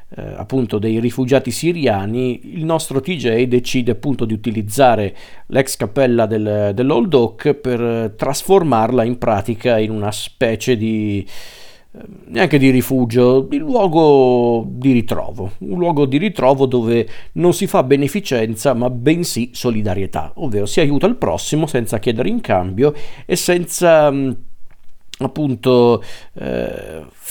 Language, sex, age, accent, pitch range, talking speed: Italian, male, 50-69, native, 110-140 Hz, 125 wpm